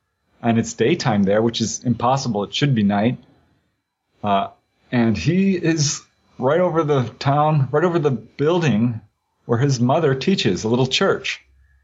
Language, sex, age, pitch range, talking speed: English, male, 30-49, 115-145 Hz, 150 wpm